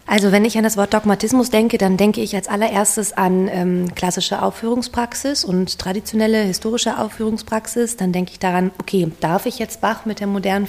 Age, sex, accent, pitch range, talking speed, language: 30-49, female, German, 175-205 Hz, 185 wpm, German